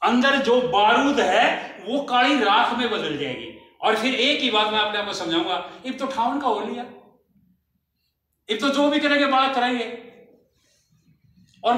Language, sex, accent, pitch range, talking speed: Hindi, male, native, 205-265 Hz, 145 wpm